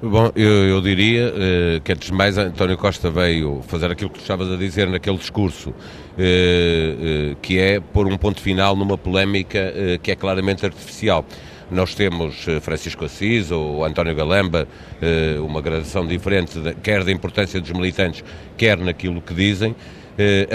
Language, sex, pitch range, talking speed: Portuguese, male, 90-110 Hz, 165 wpm